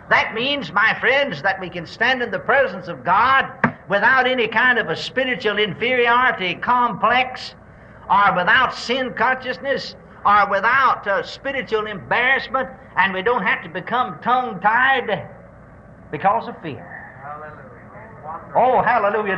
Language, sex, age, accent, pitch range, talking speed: English, male, 60-79, American, 195-260 Hz, 130 wpm